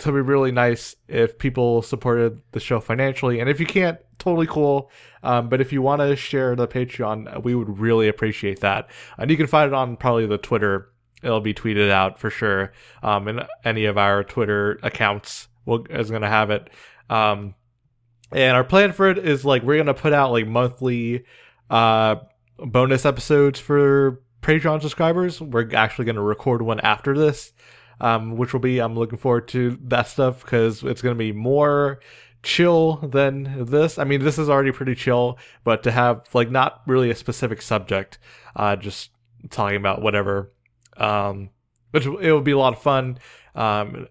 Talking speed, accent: 185 wpm, American